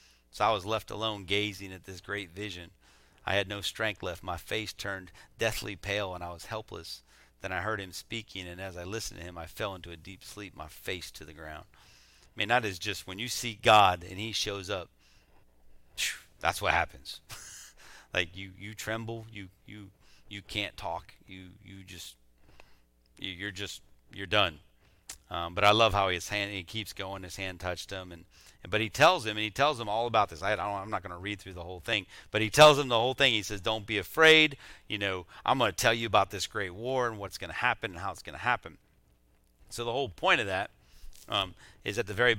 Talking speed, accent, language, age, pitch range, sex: 225 wpm, American, English, 40-59, 90-110 Hz, male